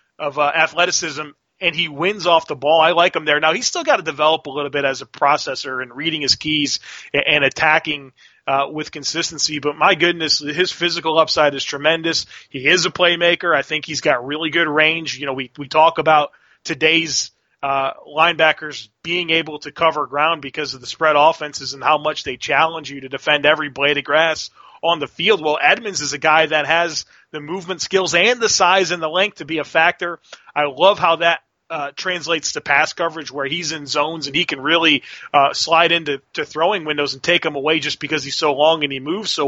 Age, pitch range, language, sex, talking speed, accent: 30-49, 145-165 Hz, English, male, 215 wpm, American